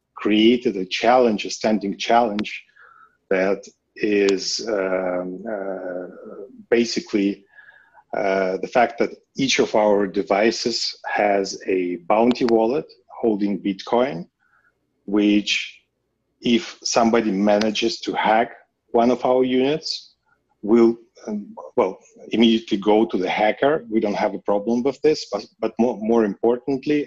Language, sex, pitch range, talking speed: English, male, 100-120 Hz, 120 wpm